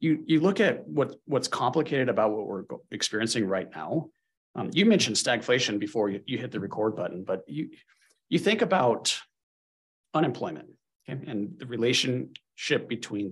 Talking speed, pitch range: 160 wpm, 110-165 Hz